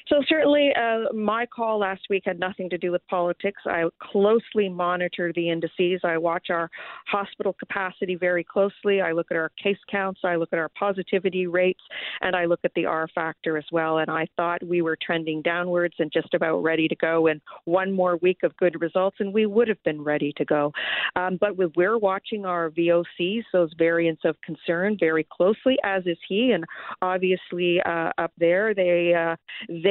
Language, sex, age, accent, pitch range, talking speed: English, female, 40-59, American, 170-200 Hz, 195 wpm